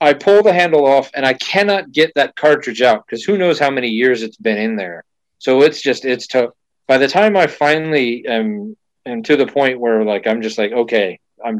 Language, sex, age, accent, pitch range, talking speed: English, male, 30-49, American, 115-160 Hz, 230 wpm